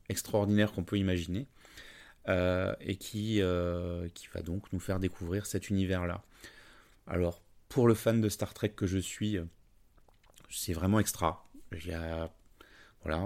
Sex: male